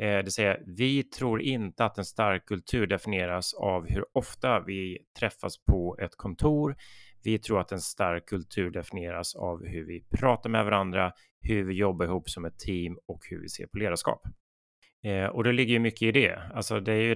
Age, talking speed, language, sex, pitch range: 30-49, 195 wpm, Swedish, male, 90-110 Hz